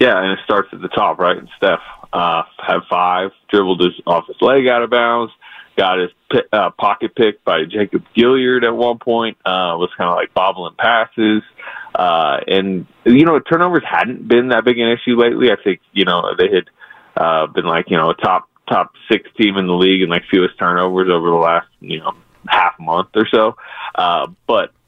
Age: 20-39